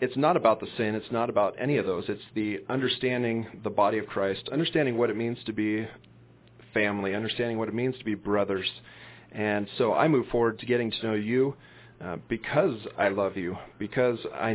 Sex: male